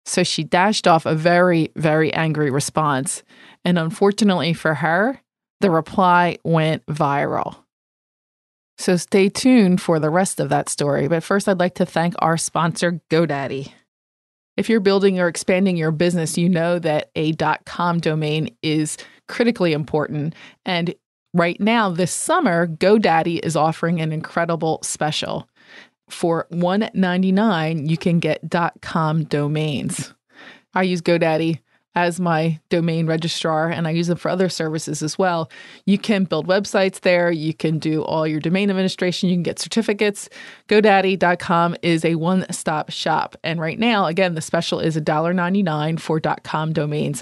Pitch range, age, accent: 160-185 Hz, 20-39, American